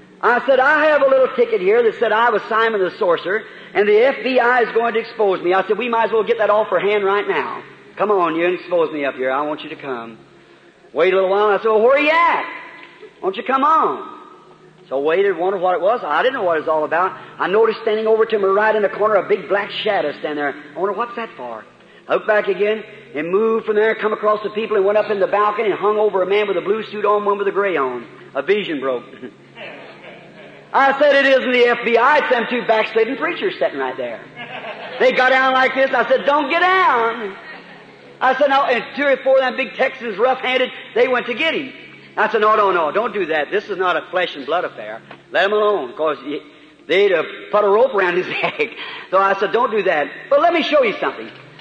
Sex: male